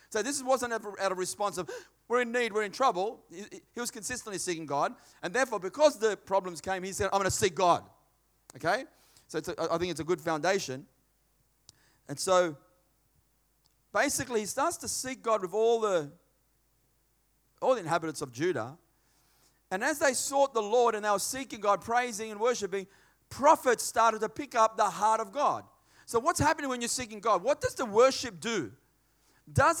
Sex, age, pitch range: male, 40-59, 180-245 Hz